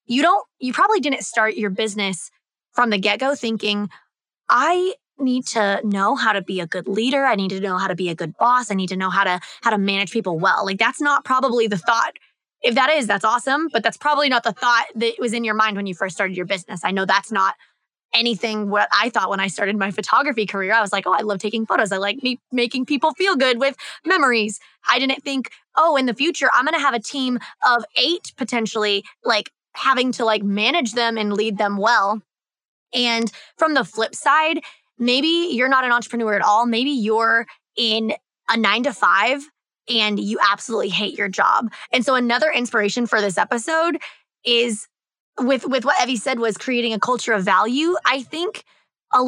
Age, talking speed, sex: 20-39, 210 wpm, female